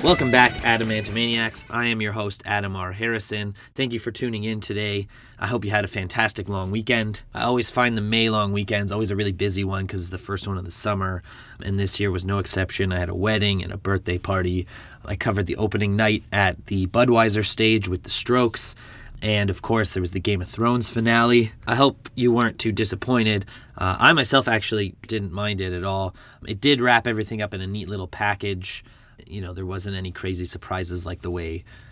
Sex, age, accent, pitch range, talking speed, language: male, 20-39, American, 95-115 Hz, 220 wpm, English